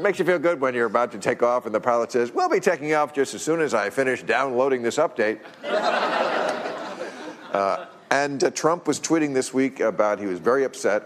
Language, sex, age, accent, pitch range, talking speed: English, male, 50-69, American, 115-150 Hz, 220 wpm